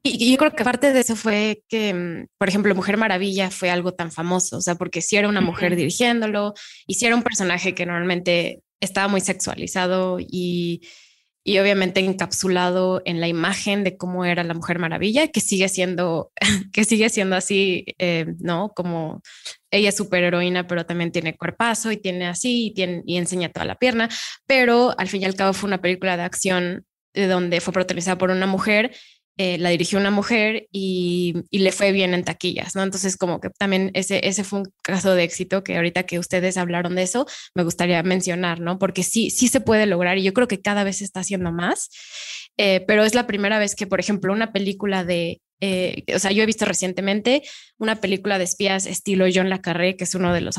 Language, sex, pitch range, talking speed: Spanish, female, 180-205 Hz, 210 wpm